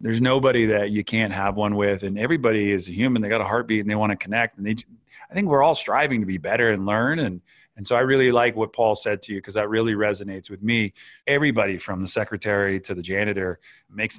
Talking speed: 250 wpm